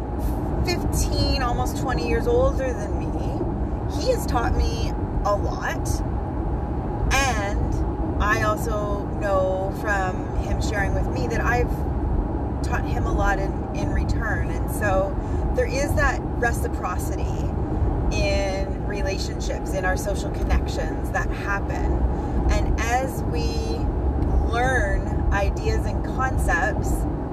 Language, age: English, 30-49